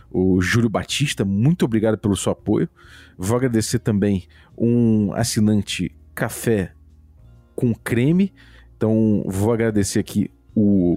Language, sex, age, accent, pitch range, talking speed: Portuguese, male, 40-59, Brazilian, 105-140 Hz, 115 wpm